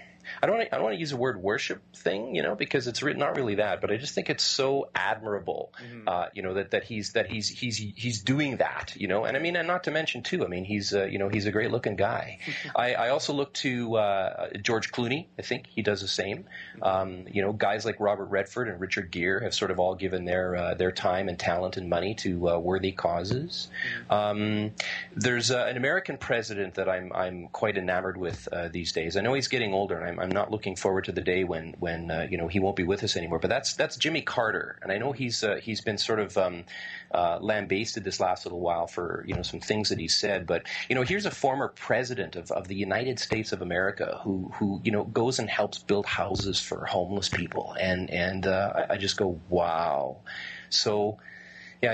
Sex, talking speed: male, 235 wpm